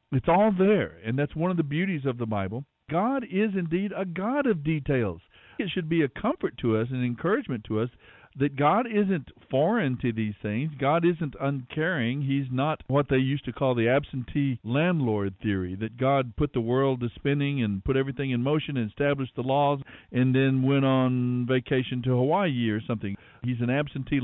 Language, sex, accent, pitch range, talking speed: English, male, American, 120-155 Hz, 195 wpm